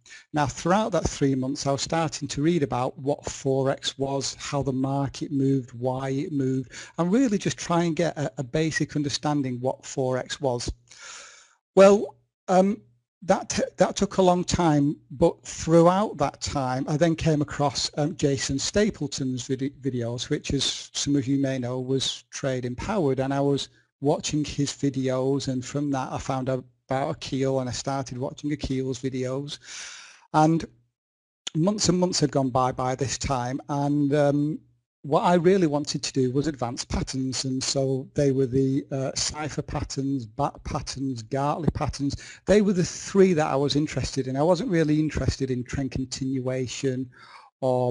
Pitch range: 130-150 Hz